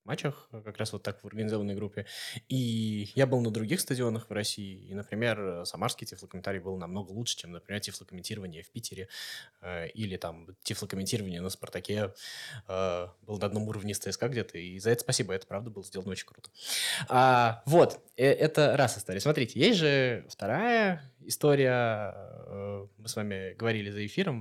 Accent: native